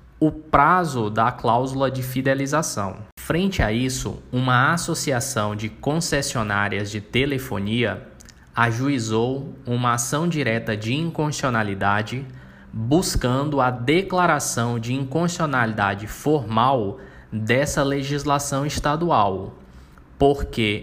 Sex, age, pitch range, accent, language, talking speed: male, 20-39, 115-145 Hz, Brazilian, Portuguese, 90 wpm